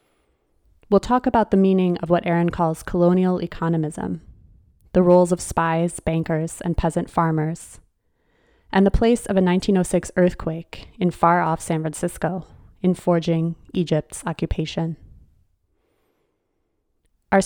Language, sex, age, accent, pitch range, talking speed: English, female, 20-39, American, 160-185 Hz, 120 wpm